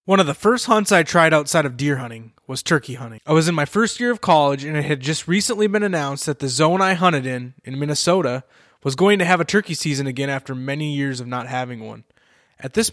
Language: English